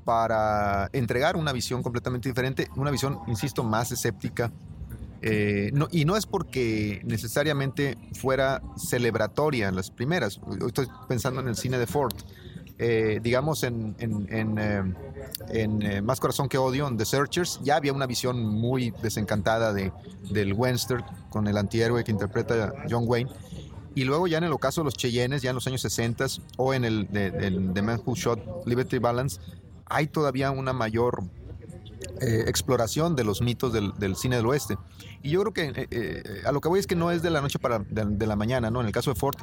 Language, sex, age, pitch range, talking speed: Spanish, male, 30-49, 105-135 Hz, 195 wpm